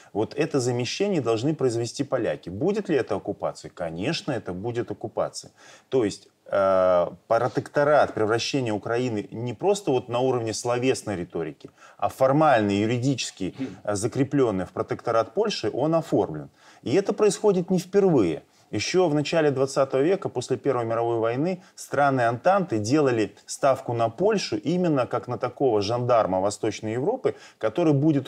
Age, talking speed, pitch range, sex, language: 20-39, 135 wpm, 110-150 Hz, male, Russian